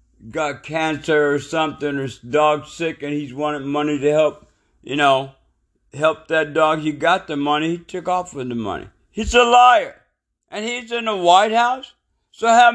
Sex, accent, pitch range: male, American, 150-215 Hz